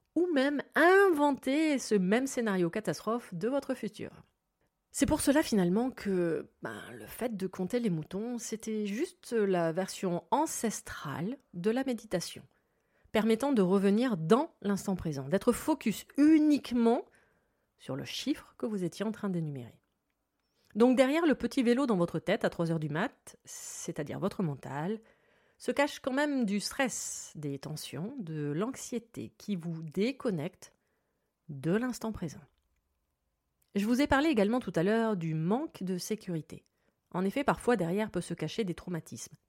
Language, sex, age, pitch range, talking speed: French, female, 30-49, 170-245 Hz, 150 wpm